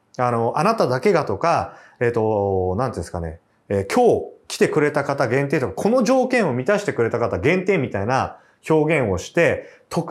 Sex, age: male, 30-49